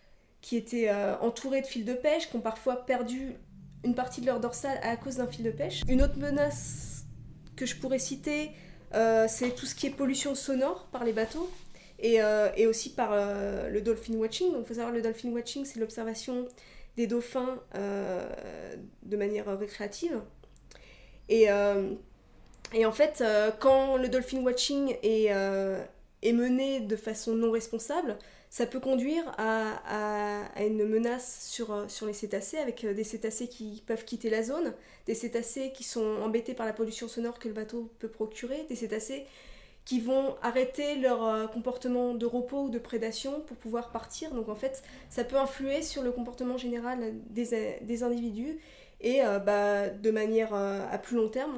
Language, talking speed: French, 180 wpm